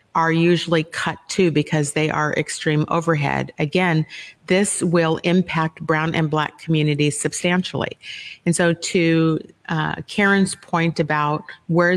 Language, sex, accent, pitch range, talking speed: English, female, American, 155-180 Hz, 130 wpm